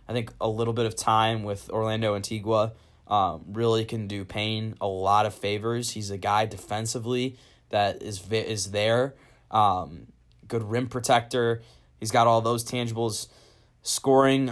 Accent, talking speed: American, 155 wpm